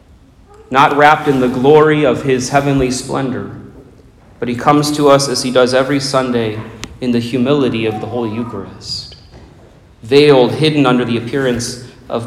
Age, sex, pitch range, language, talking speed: 40-59, male, 105-140 Hz, English, 155 wpm